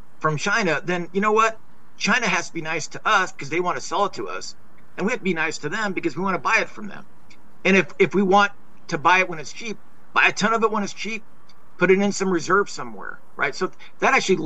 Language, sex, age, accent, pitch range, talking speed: English, male, 50-69, American, 155-200 Hz, 275 wpm